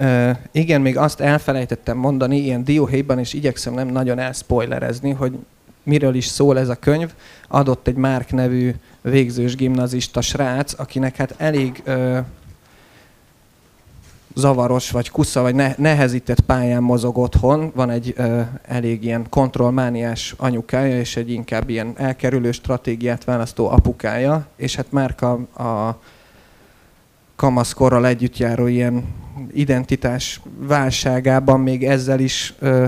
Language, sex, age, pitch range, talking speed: Hungarian, male, 30-49, 120-135 Hz, 120 wpm